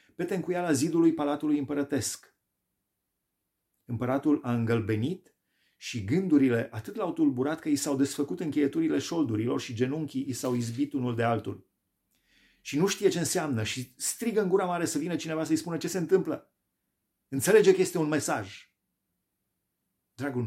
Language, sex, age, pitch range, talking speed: Romanian, male, 30-49, 105-145 Hz, 150 wpm